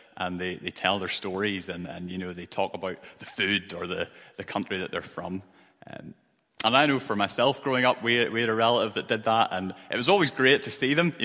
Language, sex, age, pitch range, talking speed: English, male, 30-49, 105-145 Hz, 250 wpm